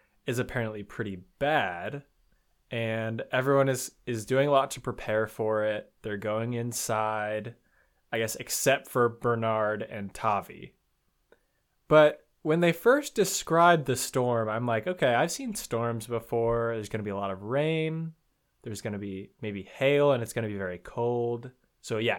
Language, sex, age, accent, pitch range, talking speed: English, male, 20-39, American, 115-155 Hz, 170 wpm